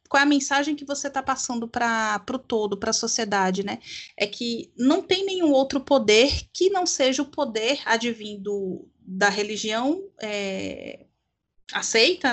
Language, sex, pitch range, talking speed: Portuguese, female, 210-280 Hz, 155 wpm